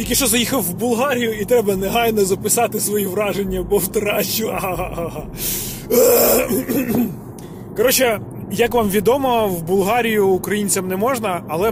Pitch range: 170-215 Hz